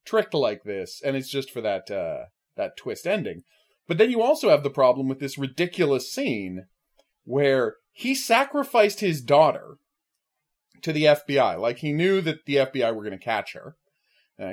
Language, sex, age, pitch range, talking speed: English, male, 30-49, 135-210 Hz, 175 wpm